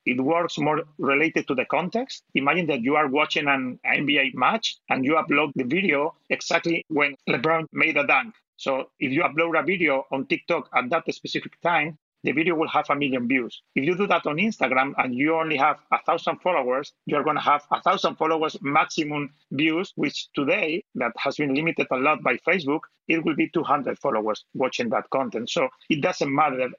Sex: male